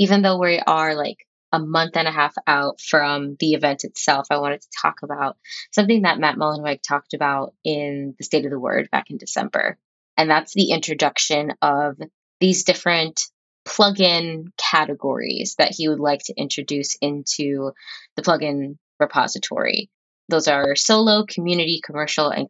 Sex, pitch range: female, 145-185 Hz